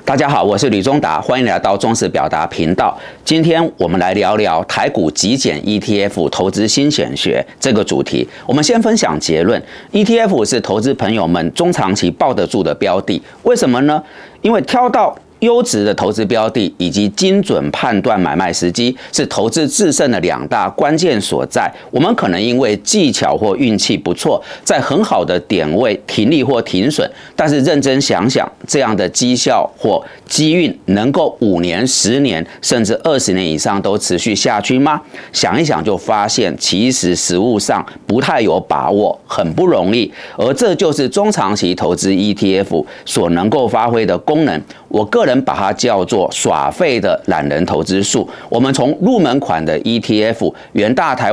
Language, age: Chinese, 40-59